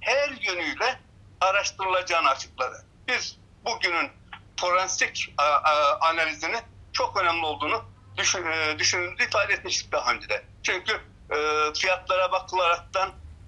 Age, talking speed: 60-79, 90 wpm